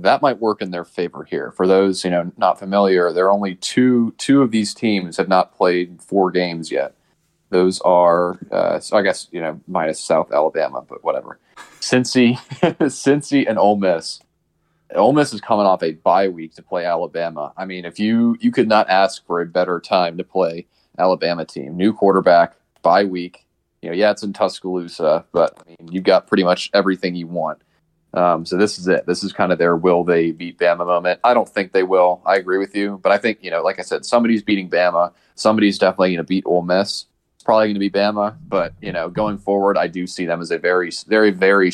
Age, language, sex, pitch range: 30-49, English, male, 85-100 Hz